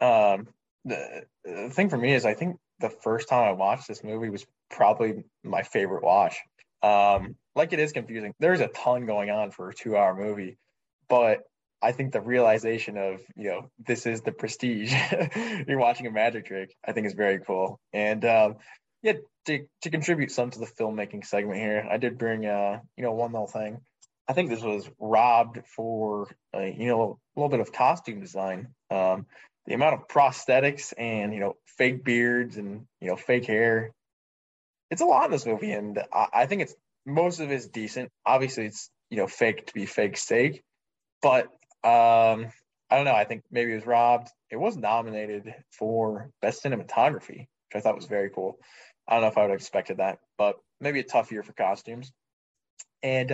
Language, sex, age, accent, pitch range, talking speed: English, male, 20-39, American, 105-125 Hz, 195 wpm